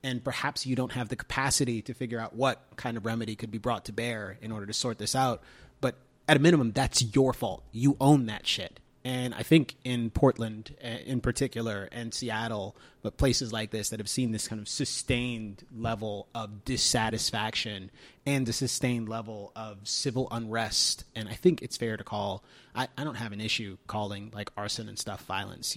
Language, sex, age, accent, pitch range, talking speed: English, male, 30-49, American, 105-130 Hz, 200 wpm